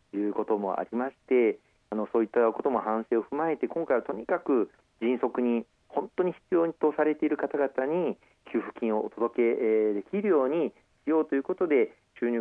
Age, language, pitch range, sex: 40-59, Japanese, 110-145 Hz, male